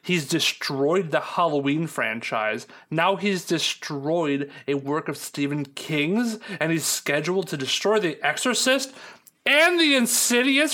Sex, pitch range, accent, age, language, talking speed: male, 150-220 Hz, American, 30-49, English, 130 wpm